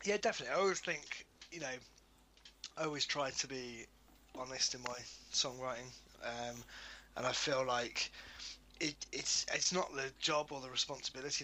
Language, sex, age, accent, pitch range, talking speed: English, male, 20-39, British, 125-165 Hz, 155 wpm